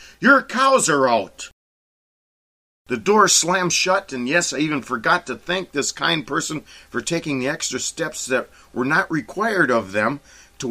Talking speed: 170 wpm